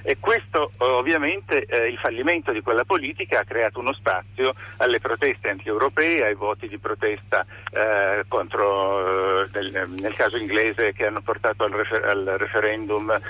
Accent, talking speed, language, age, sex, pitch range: native, 125 wpm, Italian, 50-69, male, 100-130 Hz